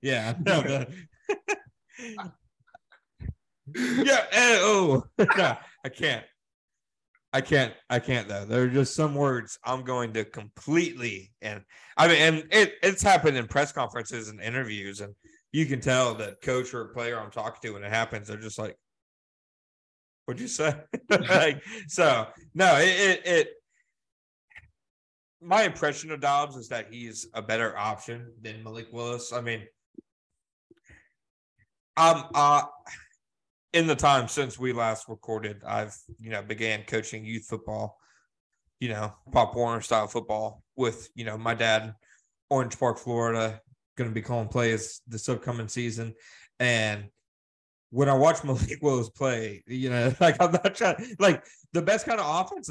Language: English